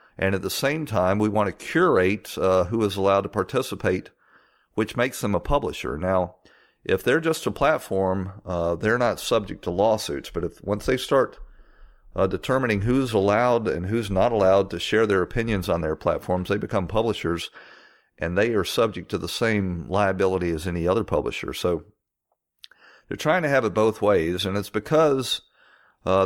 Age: 40-59